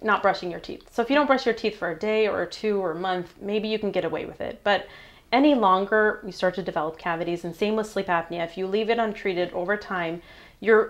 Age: 30-49